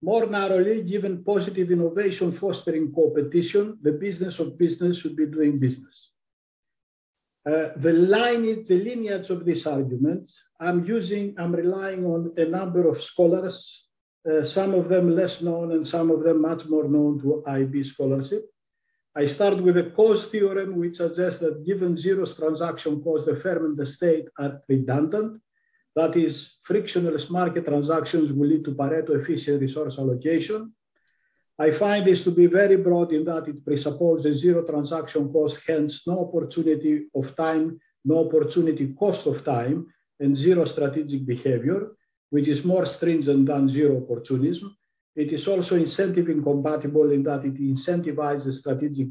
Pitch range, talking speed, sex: 150-180 Hz, 155 wpm, male